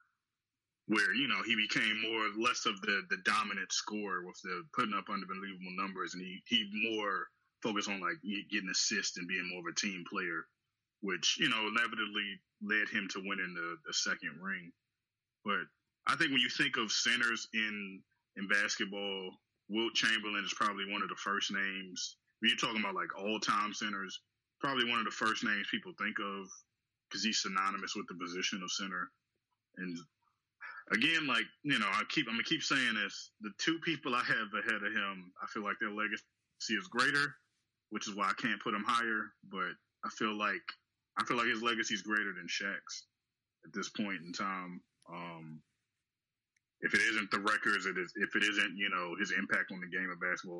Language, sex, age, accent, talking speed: English, male, 20-39, American, 195 wpm